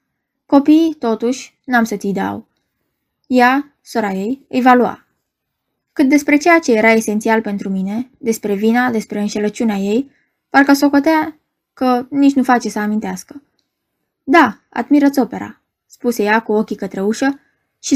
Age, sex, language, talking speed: 20-39, female, Romanian, 145 wpm